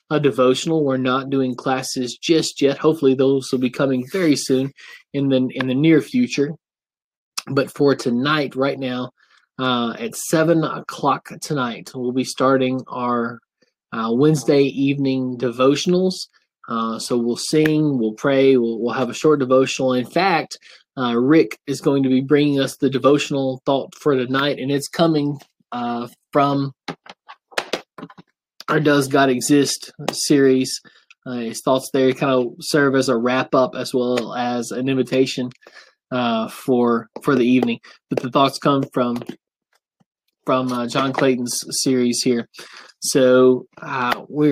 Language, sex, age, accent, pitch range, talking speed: English, male, 20-39, American, 125-145 Hz, 150 wpm